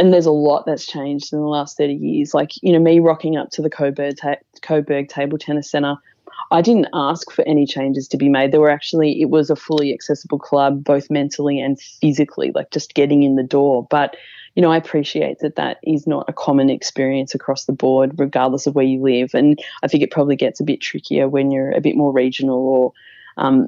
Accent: Australian